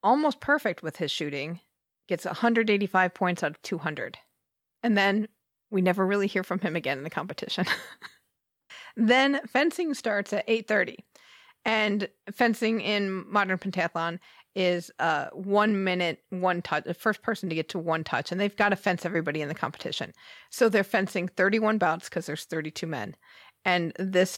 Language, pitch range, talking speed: English, 170-215 Hz, 165 wpm